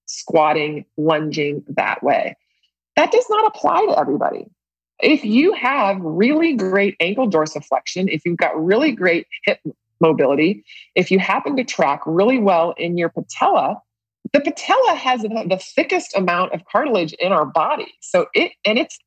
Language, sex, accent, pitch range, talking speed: English, female, American, 155-220 Hz, 155 wpm